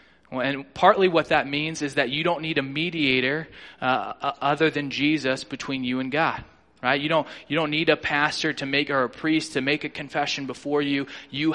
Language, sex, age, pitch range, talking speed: English, male, 30-49, 140-160 Hz, 215 wpm